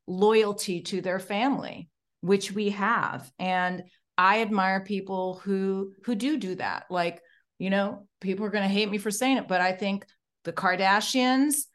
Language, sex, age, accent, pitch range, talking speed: English, female, 30-49, American, 185-245 Hz, 170 wpm